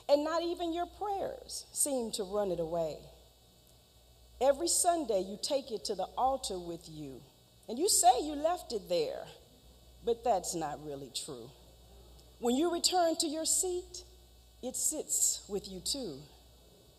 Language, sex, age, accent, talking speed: English, female, 40-59, American, 150 wpm